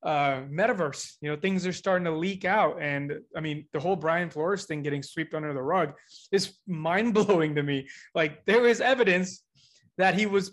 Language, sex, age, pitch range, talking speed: English, male, 20-39, 175-230 Hz, 195 wpm